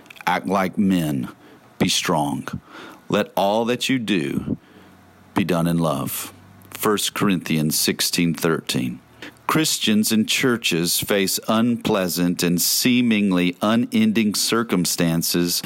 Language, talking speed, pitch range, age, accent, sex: English, 105 wpm, 90-110 Hz, 40-59, American, male